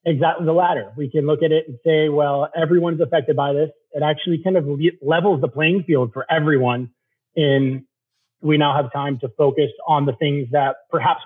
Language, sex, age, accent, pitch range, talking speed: English, male, 30-49, American, 135-165 Hz, 195 wpm